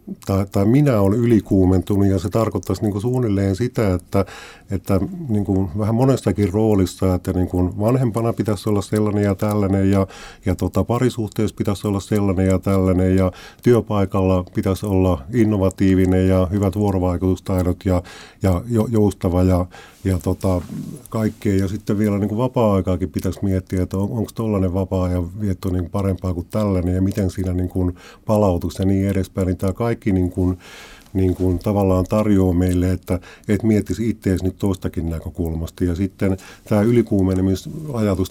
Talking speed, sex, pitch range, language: 145 wpm, male, 95-110 Hz, Finnish